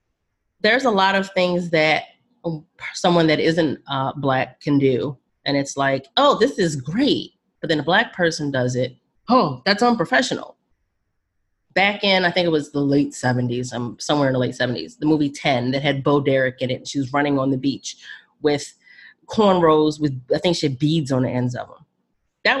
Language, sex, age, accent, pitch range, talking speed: English, female, 30-49, American, 135-195 Hz, 195 wpm